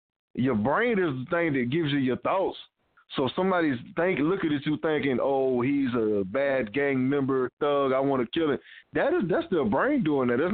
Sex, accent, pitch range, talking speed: male, American, 135-170 Hz, 210 wpm